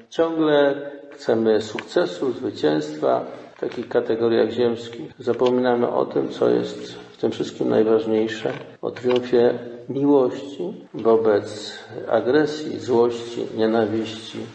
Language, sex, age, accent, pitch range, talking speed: Polish, male, 50-69, native, 115-155 Hz, 100 wpm